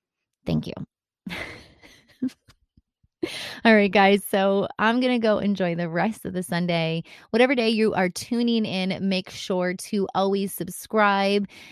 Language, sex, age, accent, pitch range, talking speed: English, female, 20-39, American, 180-225 Hz, 140 wpm